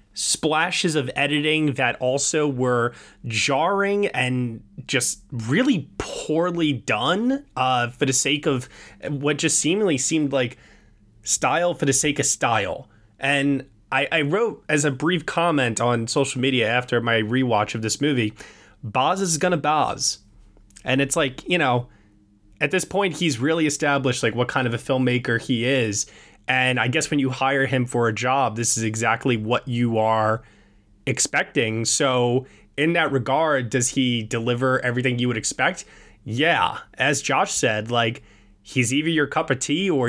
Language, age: English, 20-39